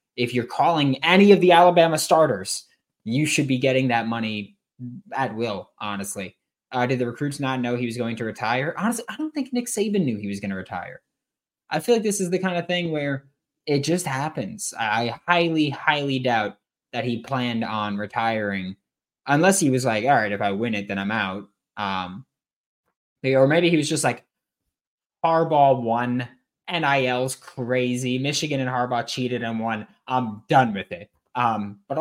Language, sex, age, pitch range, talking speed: English, male, 20-39, 110-140 Hz, 185 wpm